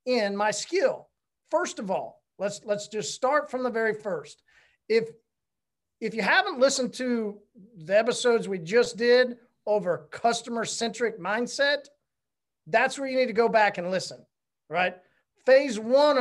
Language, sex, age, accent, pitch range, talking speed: English, male, 40-59, American, 210-255 Hz, 150 wpm